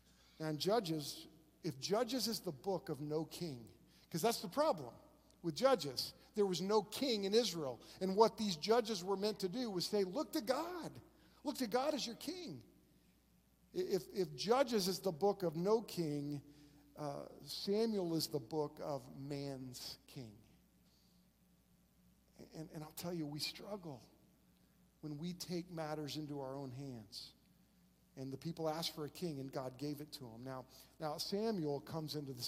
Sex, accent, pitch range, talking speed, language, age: male, American, 150-205 Hz, 170 wpm, English, 50-69